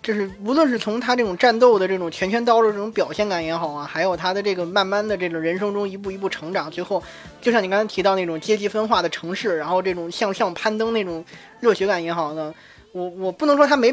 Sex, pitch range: male, 170-240 Hz